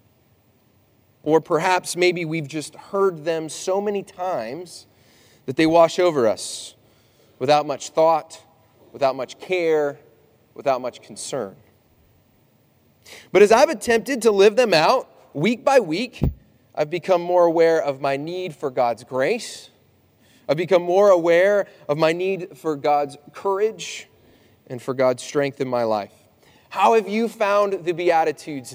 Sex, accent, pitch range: male, American, 130-190 Hz